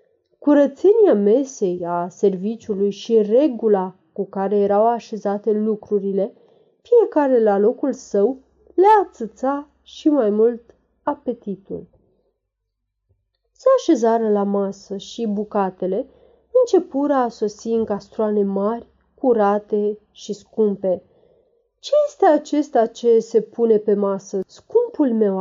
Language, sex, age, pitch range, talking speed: Romanian, female, 30-49, 205-290 Hz, 110 wpm